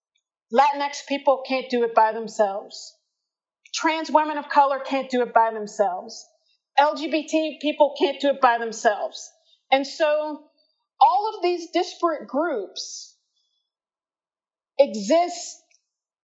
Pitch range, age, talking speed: 240-305 Hz, 40-59, 115 wpm